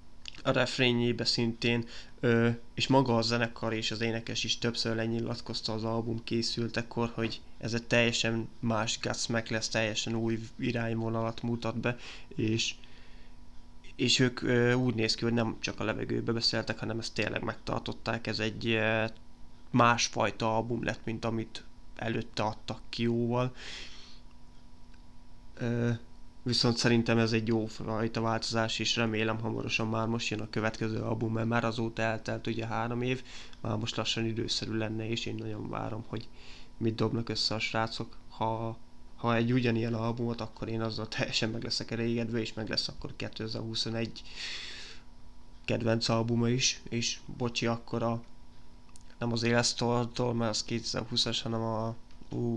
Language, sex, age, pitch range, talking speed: Hungarian, male, 20-39, 110-120 Hz, 145 wpm